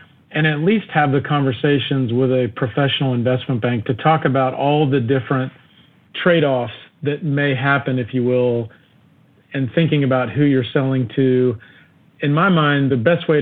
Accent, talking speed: American, 165 wpm